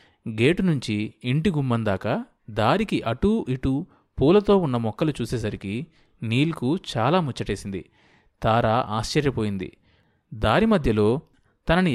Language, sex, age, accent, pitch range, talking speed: Telugu, male, 30-49, native, 115-170 Hz, 95 wpm